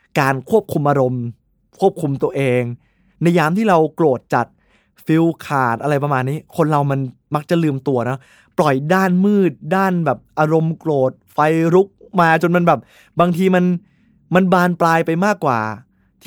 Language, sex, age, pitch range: Thai, male, 20-39, 135-180 Hz